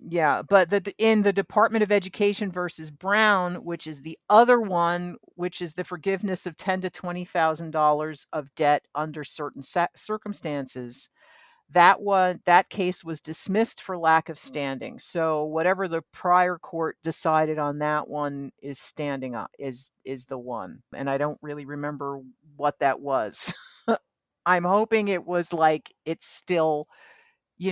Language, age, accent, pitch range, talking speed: English, 50-69, American, 150-200 Hz, 155 wpm